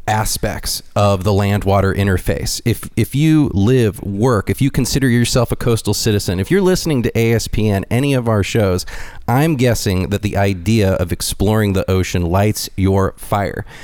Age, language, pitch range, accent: 30-49, English, 95-115 Hz, American